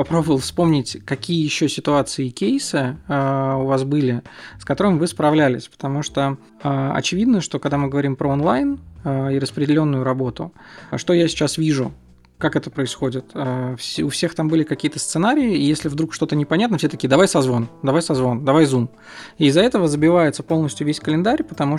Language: Russian